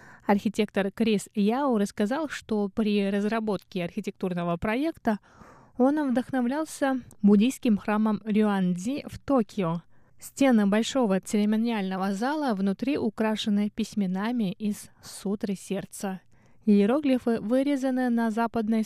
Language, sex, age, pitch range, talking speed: Russian, female, 20-39, 190-235 Hz, 95 wpm